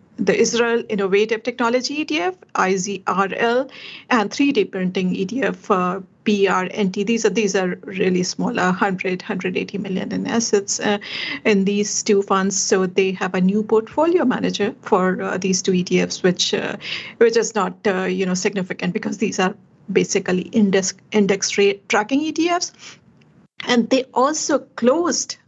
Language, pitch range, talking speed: English, 190-230 Hz, 150 wpm